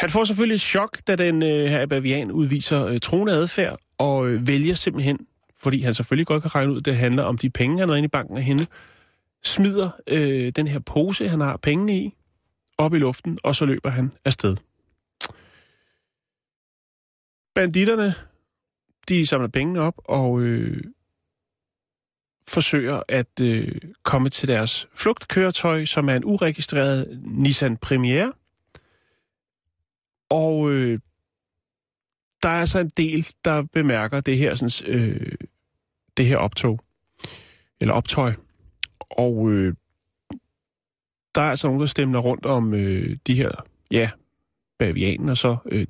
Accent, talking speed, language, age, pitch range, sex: native, 140 wpm, Danish, 30-49, 125-170 Hz, male